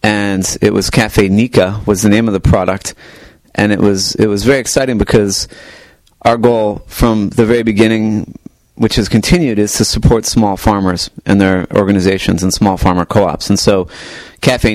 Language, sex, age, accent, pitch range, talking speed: English, male, 30-49, American, 95-110 Hz, 175 wpm